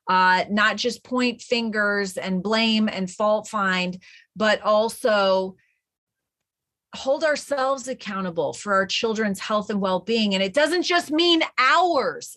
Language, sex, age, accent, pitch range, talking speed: English, female, 30-49, American, 195-245 Hz, 130 wpm